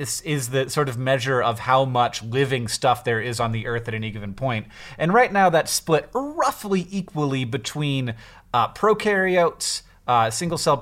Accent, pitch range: American, 120-165 Hz